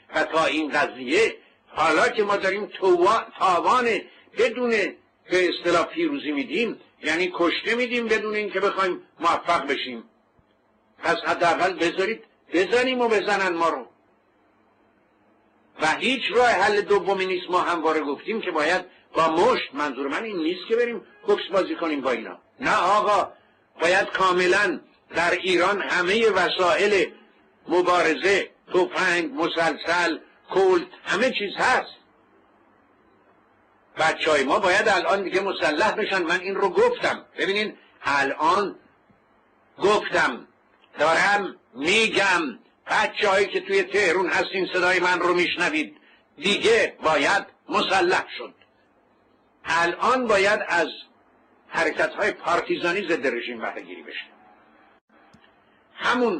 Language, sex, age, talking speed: Persian, male, 60-79, 120 wpm